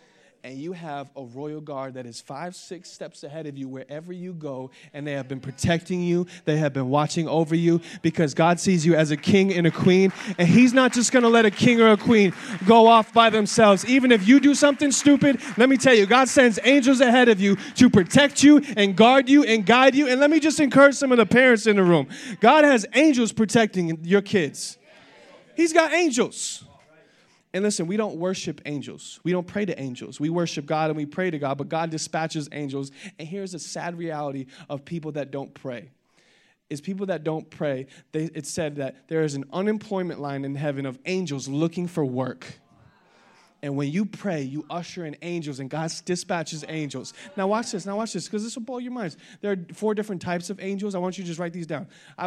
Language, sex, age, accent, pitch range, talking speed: English, male, 20-39, American, 155-220 Hz, 220 wpm